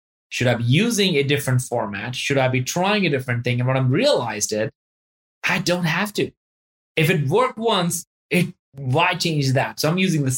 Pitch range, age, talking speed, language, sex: 125-165 Hz, 20-39, 200 wpm, English, male